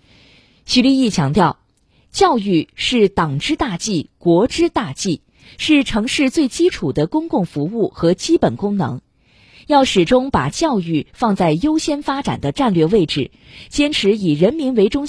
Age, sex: 20-39, female